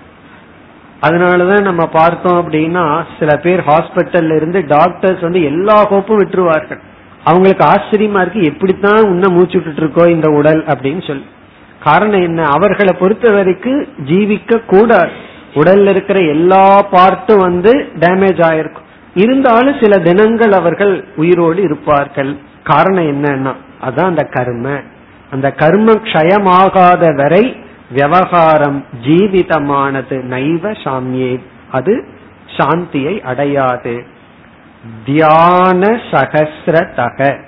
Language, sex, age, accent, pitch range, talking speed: Tamil, male, 50-69, native, 145-190 Hz, 100 wpm